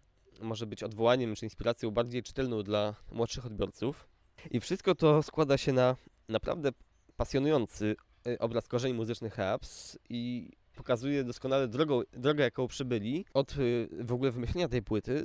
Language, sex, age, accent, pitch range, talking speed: Polish, male, 20-39, native, 115-140 Hz, 140 wpm